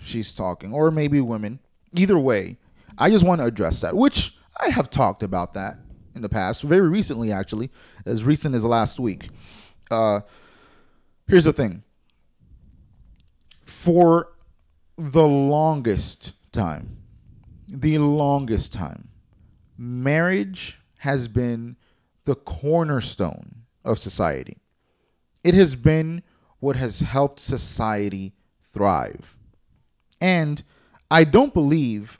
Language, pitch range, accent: English, 105-150 Hz, American